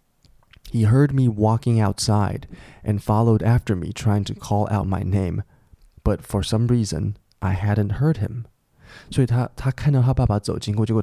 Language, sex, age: Chinese, male, 20-39